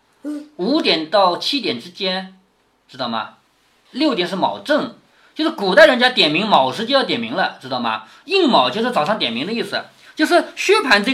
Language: Chinese